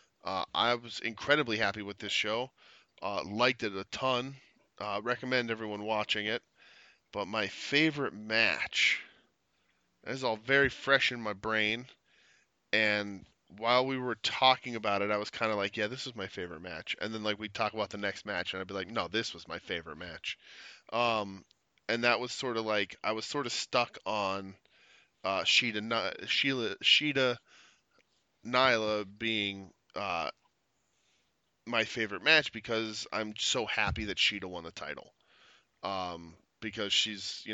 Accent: American